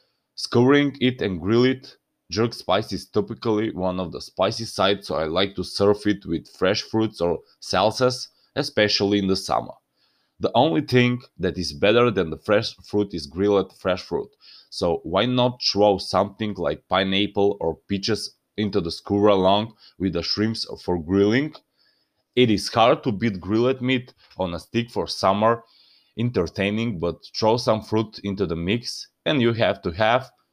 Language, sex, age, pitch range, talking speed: English, male, 20-39, 95-120 Hz, 170 wpm